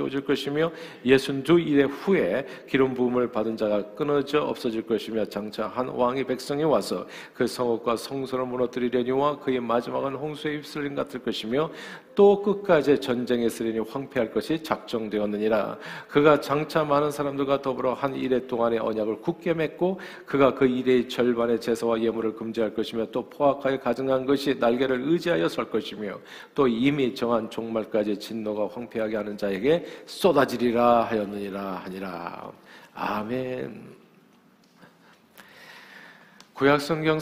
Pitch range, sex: 115-140 Hz, male